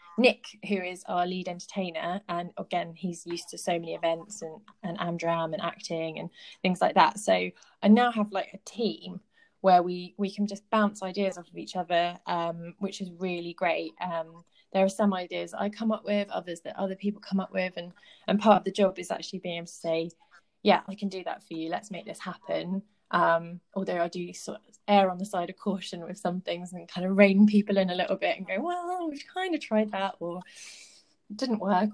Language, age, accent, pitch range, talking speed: English, 20-39, British, 170-205 Hz, 225 wpm